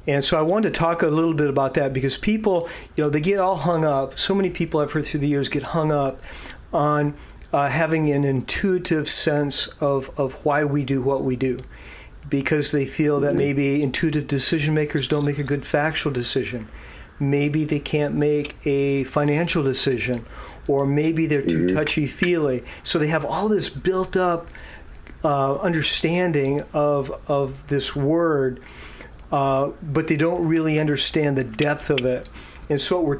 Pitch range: 140-160 Hz